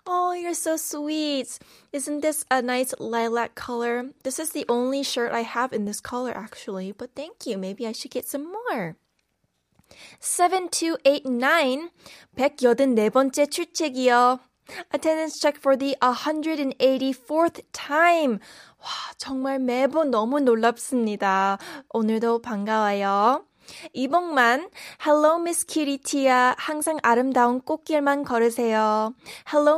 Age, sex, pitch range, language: 20-39, female, 240-305 Hz, Korean